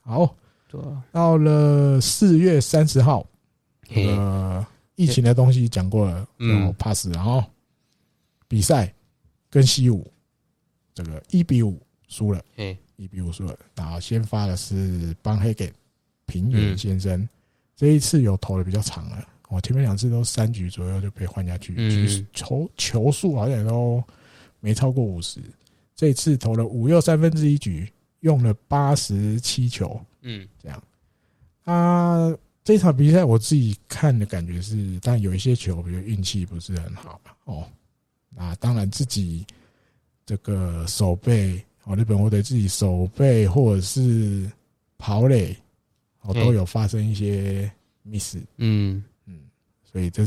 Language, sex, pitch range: Chinese, male, 95-130 Hz